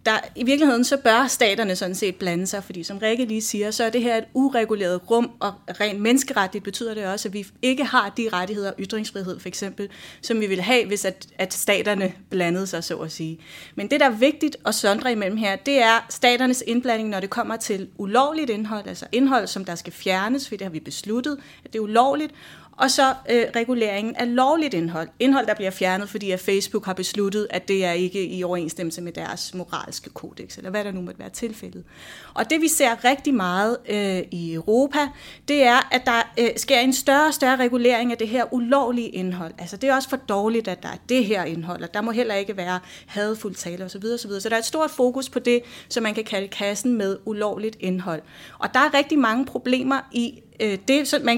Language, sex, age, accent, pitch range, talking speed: Danish, female, 30-49, native, 195-250 Hz, 220 wpm